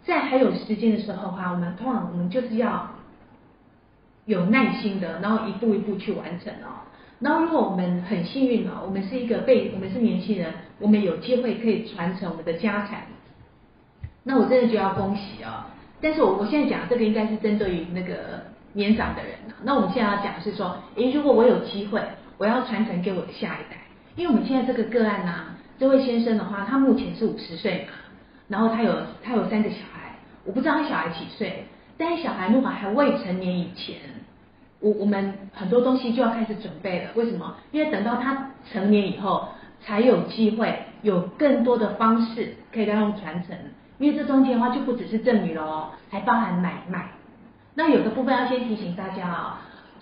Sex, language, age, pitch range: female, Chinese, 40-59, 195-245 Hz